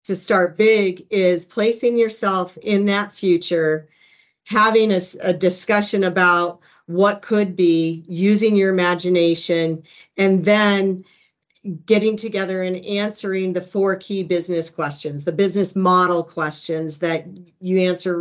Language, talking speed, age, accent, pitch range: English, 125 wpm, 50-69, American, 180-205 Hz